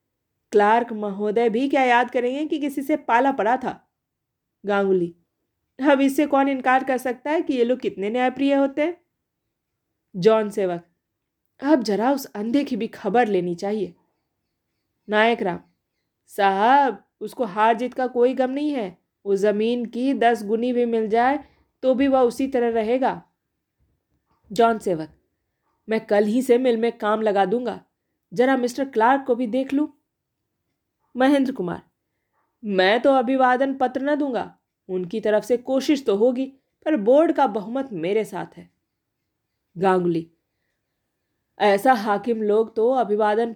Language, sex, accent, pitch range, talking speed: Hindi, female, native, 205-270 Hz, 145 wpm